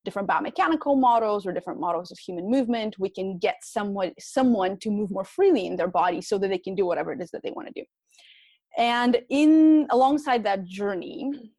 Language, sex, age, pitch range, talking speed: English, female, 20-39, 190-245 Hz, 200 wpm